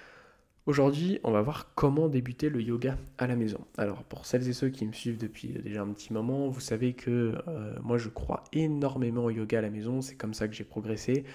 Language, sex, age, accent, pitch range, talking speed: French, male, 20-39, French, 110-130 Hz, 225 wpm